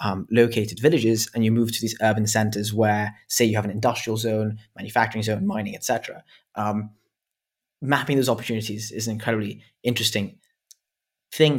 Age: 20-39